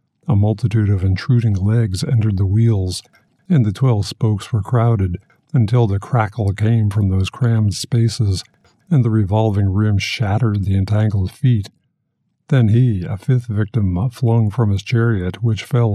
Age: 50-69